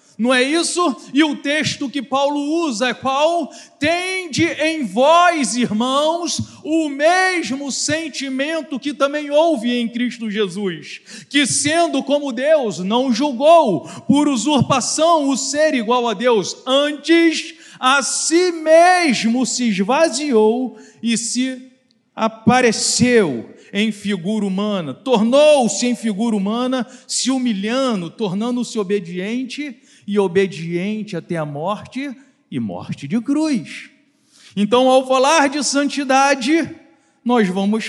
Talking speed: 115 wpm